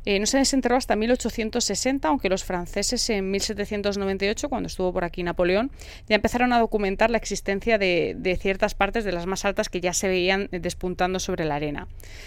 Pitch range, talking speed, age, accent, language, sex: 180-220 Hz, 185 wpm, 20-39, Spanish, Spanish, female